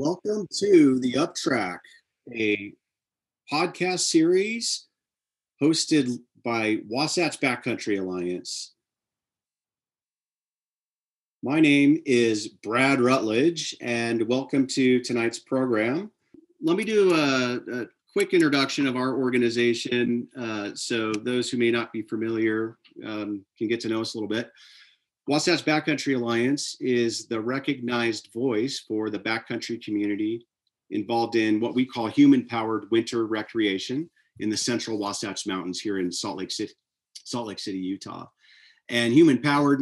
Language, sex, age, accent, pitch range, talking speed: English, male, 40-59, American, 110-135 Hz, 125 wpm